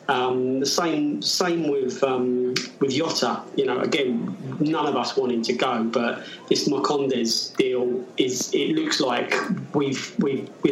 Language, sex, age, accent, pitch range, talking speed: English, male, 20-39, British, 120-140 Hz, 150 wpm